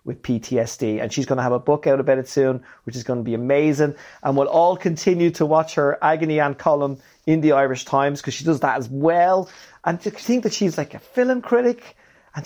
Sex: male